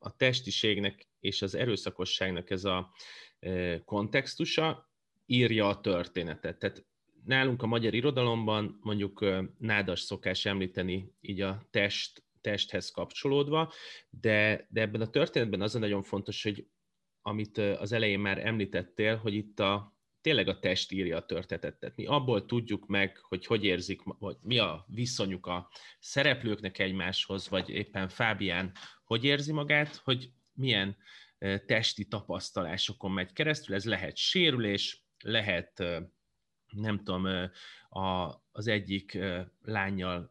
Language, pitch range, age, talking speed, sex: Hungarian, 95-115 Hz, 30-49, 130 wpm, male